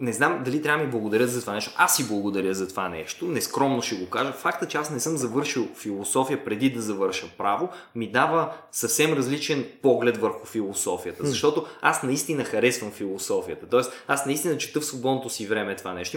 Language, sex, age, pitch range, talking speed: Bulgarian, male, 20-39, 115-160 Hz, 195 wpm